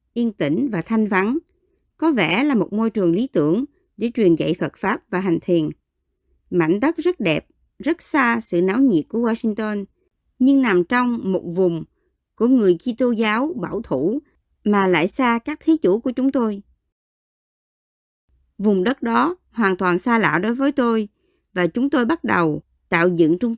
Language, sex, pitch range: Vietnamese, male, 180-260 Hz